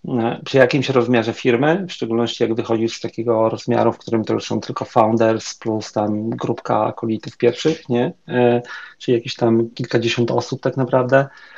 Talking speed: 165 wpm